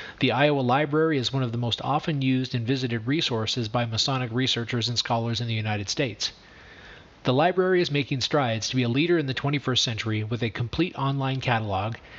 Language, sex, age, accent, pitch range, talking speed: English, male, 40-59, American, 120-150 Hz, 195 wpm